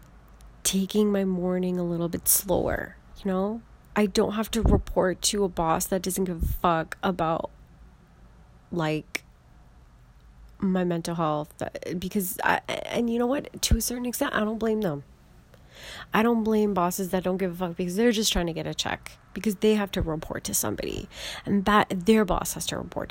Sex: female